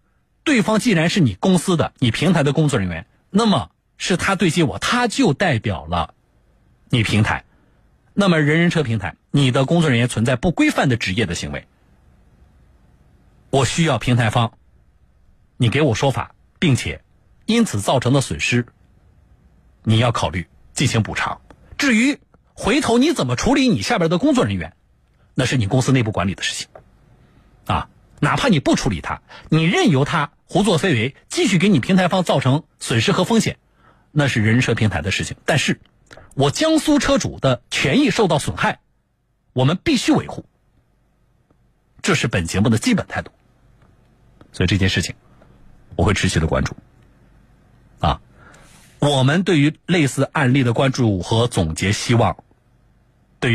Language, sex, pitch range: Chinese, male, 95-155 Hz